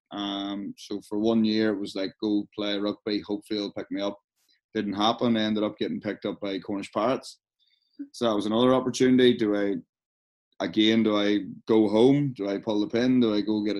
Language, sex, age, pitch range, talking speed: English, male, 20-39, 105-115 Hz, 200 wpm